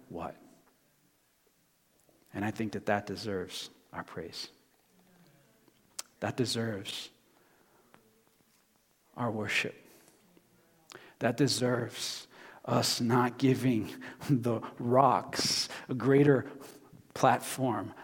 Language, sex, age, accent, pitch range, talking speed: English, male, 50-69, American, 115-135 Hz, 75 wpm